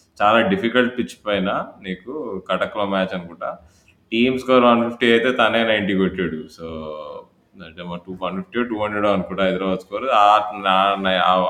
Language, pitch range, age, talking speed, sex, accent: Telugu, 95-120 Hz, 20-39, 145 wpm, male, native